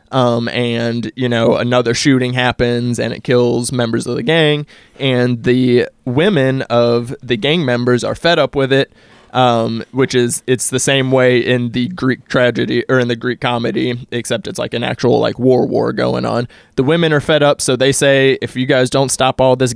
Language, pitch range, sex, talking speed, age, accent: English, 120-135 Hz, male, 205 wpm, 20-39, American